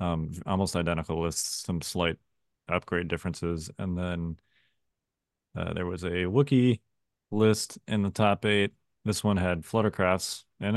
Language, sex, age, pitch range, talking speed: English, male, 30-49, 90-105 Hz, 140 wpm